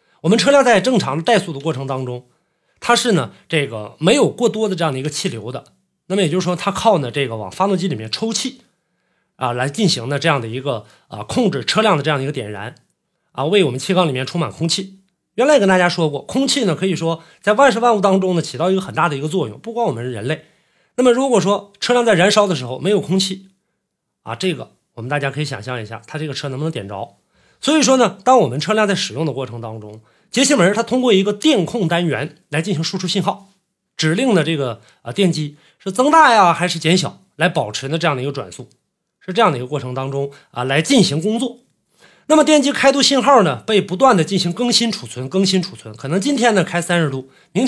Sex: male